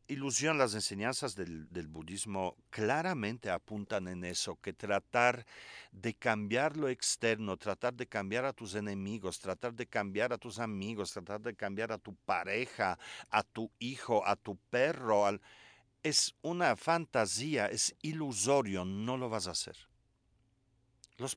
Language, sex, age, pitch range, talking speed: Spanish, male, 50-69, 100-140 Hz, 145 wpm